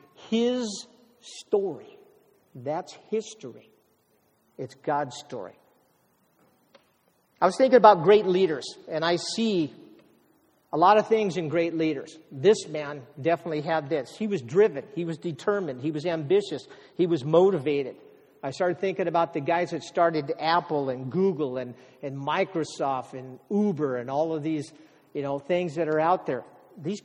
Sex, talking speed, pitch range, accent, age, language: male, 150 wpm, 155-235 Hz, American, 50-69, English